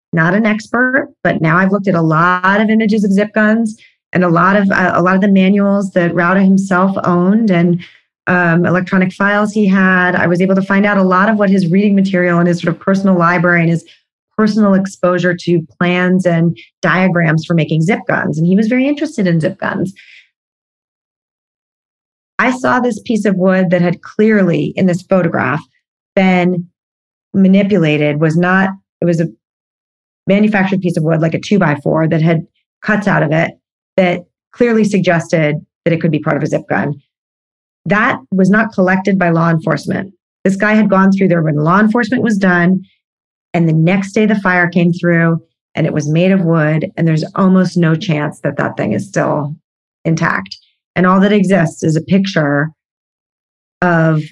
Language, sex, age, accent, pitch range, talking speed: English, female, 30-49, American, 170-195 Hz, 190 wpm